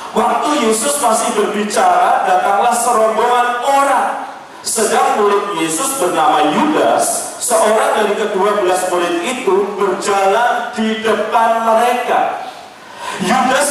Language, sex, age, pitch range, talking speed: Malay, male, 40-59, 225-265 Hz, 100 wpm